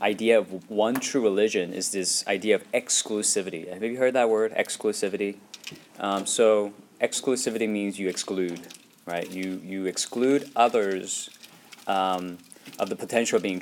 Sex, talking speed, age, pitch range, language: male, 145 wpm, 20-39, 95-130 Hz, English